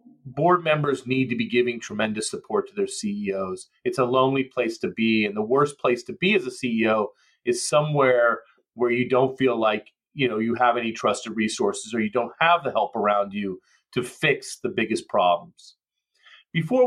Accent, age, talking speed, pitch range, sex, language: American, 30-49, 190 wpm, 120-155 Hz, male, English